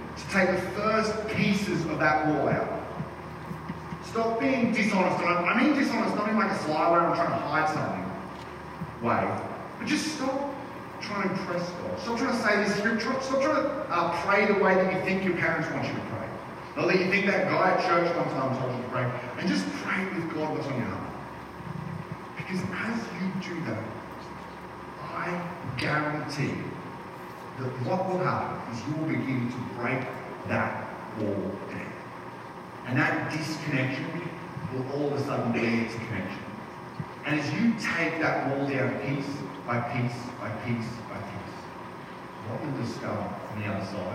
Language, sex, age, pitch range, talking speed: English, male, 40-59, 120-190 Hz, 175 wpm